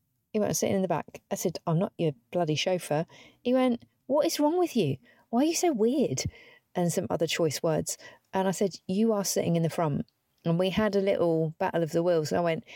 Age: 40-59